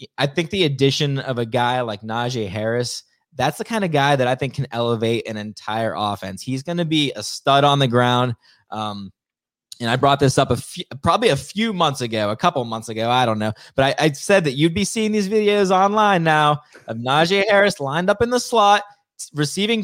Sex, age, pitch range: male, 20-39, 125-165 Hz